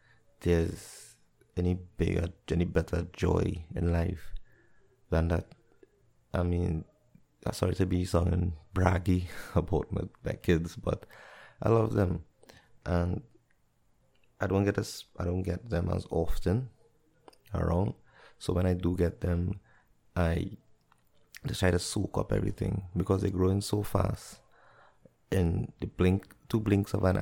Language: English